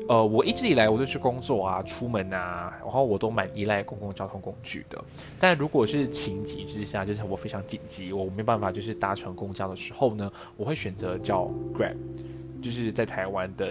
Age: 20-39